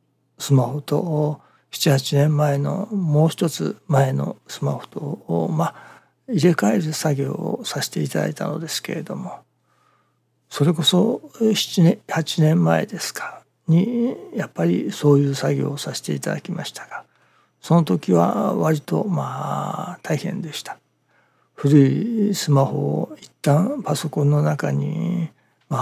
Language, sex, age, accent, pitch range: Japanese, male, 60-79, native, 140-190 Hz